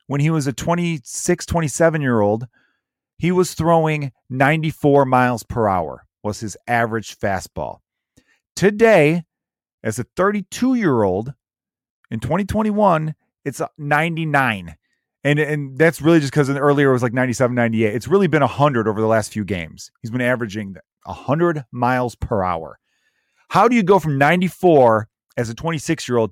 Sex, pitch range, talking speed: male, 125-175 Hz, 145 wpm